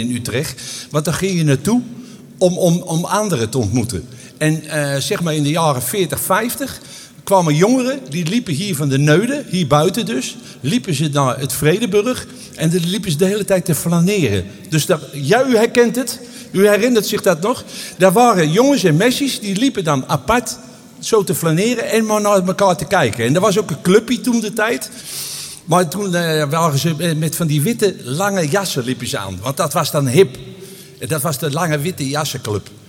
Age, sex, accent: 50-69, male, Dutch